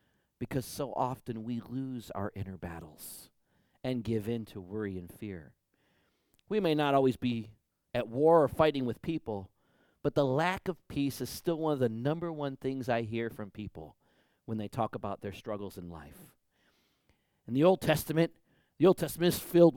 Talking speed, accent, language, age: 180 wpm, American, English, 40-59